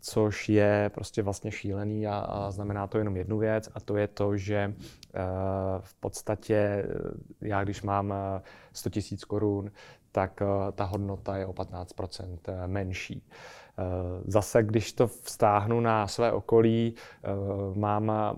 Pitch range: 100-110 Hz